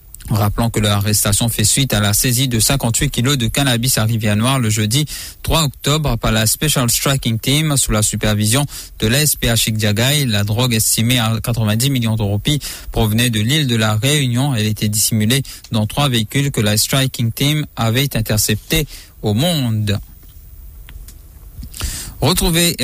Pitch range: 110-135 Hz